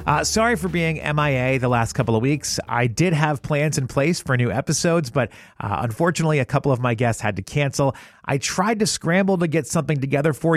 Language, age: English, 40-59